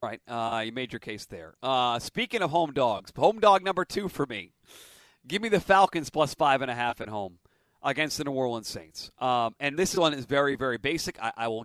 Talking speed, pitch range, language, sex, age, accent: 235 wpm, 135-210 Hz, English, male, 40-59, American